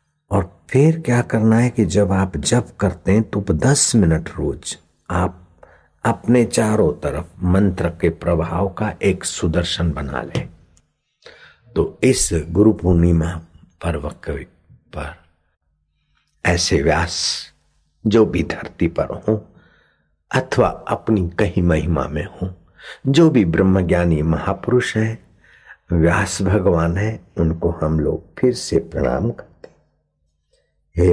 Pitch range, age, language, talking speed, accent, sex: 85-120 Hz, 60-79, Hindi, 120 wpm, native, male